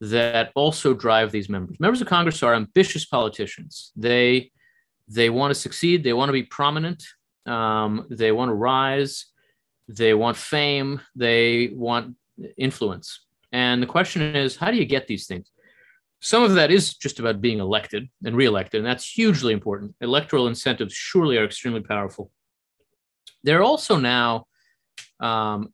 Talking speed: 155 wpm